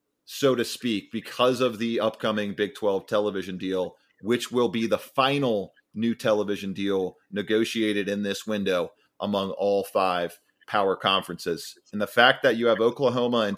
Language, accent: English, American